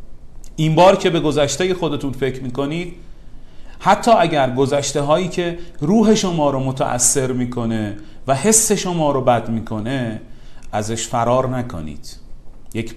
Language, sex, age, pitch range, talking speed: Persian, male, 40-59, 120-155 Hz, 130 wpm